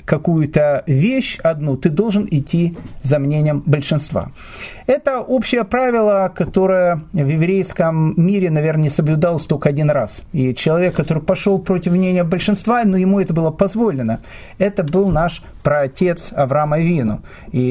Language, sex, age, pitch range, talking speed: Russian, male, 40-59, 145-190 Hz, 140 wpm